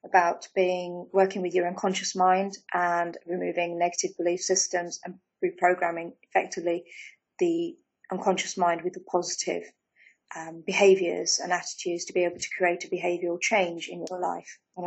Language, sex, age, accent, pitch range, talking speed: English, female, 30-49, British, 175-195 Hz, 150 wpm